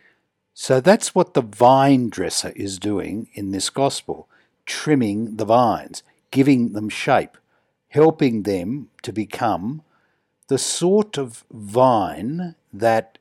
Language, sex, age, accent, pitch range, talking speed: English, male, 60-79, Australian, 110-140 Hz, 120 wpm